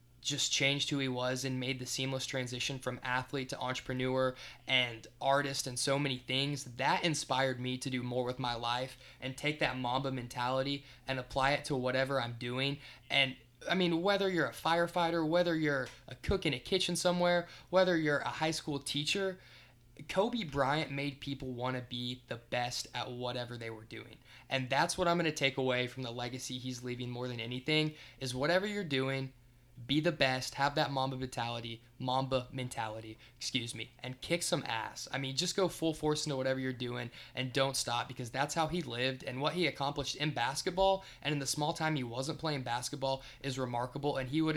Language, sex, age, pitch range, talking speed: English, male, 20-39, 125-150 Hz, 200 wpm